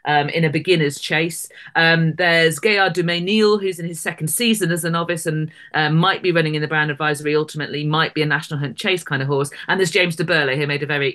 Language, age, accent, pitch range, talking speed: English, 40-59, British, 150-180 Hz, 240 wpm